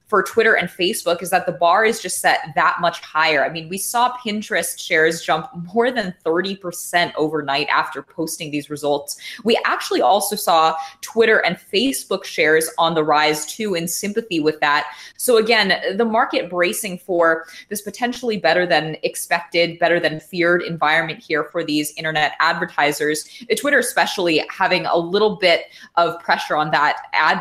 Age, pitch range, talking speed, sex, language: 20-39, 155-205 Hz, 165 wpm, female, English